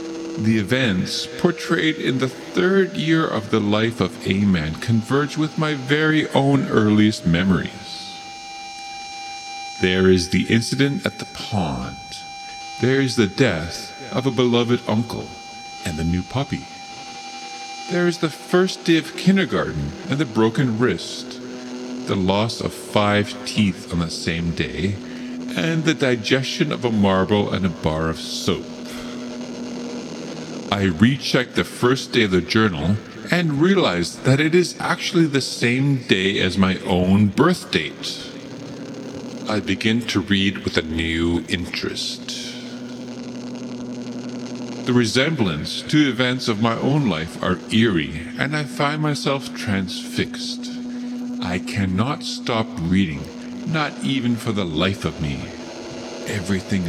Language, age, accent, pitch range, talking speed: English, 50-69, American, 100-155 Hz, 135 wpm